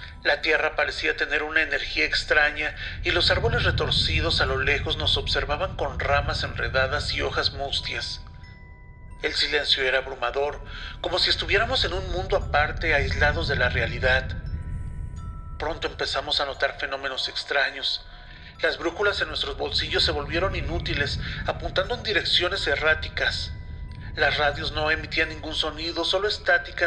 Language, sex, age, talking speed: Spanish, male, 40-59, 140 wpm